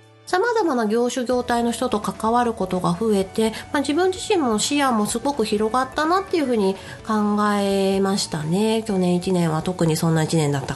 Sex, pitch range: female, 210-325 Hz